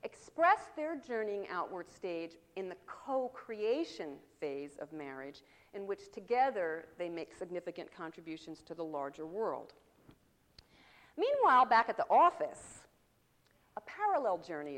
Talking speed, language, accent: 120 wpm, English, American